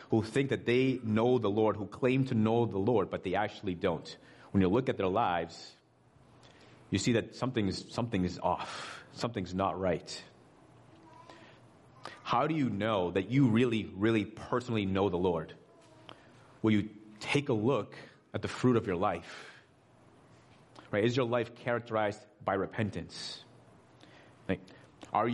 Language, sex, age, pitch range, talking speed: English, male, 30-49, 100-125 Hz, 150 wpm